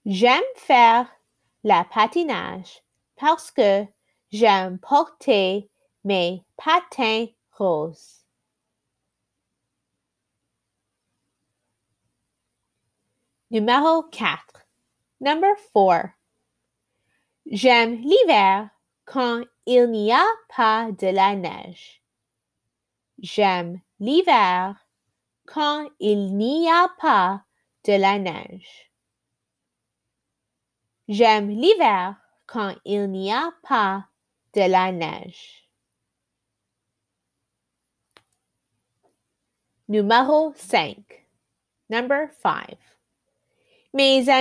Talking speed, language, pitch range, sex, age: 60 wpm, French, 195-300 Hz, female, 30-49